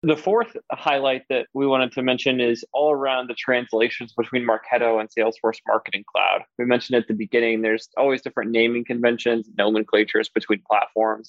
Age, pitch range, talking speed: 20-39, 120-140 Hz, 170 wpm